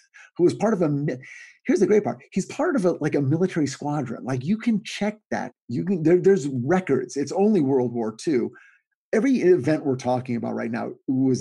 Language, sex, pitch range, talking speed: English, male, 130-195 Hz, 205 wpm